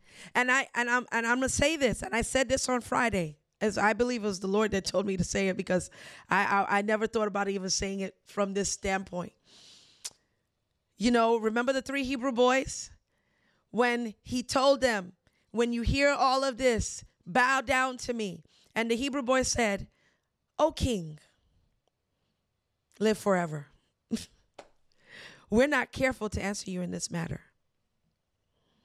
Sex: female